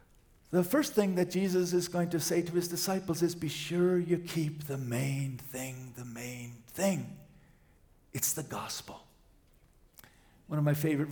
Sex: male